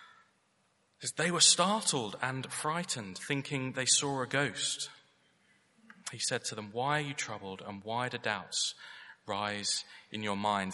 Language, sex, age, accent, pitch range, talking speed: English, male, 30-49, British, 125-160 Hz, 145 wpm